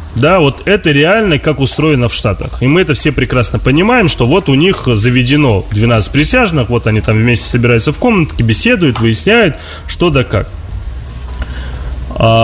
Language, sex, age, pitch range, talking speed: Russian, male, 20-39, 110-150 Hz, 165 wpm